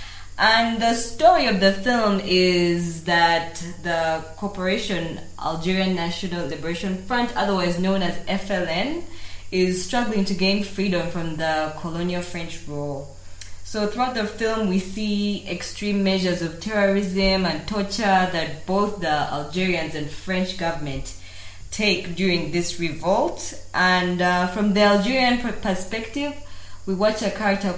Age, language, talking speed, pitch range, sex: 20-39, English, 130 wpm, 165-205 Hz, female